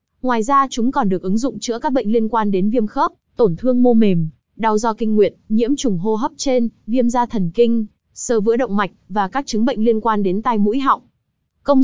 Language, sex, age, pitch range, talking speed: Vietnamese, female, 20-39, 200-250 Hz, 240 wpm